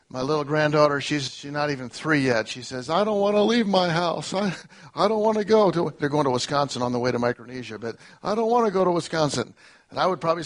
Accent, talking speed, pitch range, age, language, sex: American, 265 wpm, 135-185 Hz, 50-69, English, male